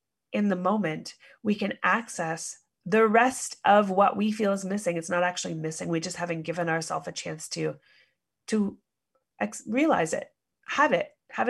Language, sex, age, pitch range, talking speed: English, female, 30-49, 180-245 Hz, 170 wpm